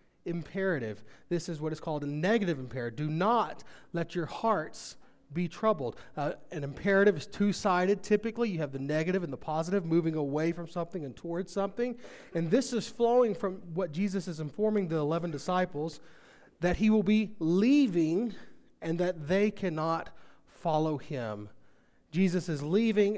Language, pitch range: English, 150-195 Hz